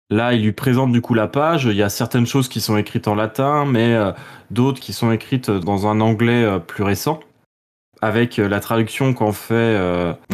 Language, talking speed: French, 215 wpm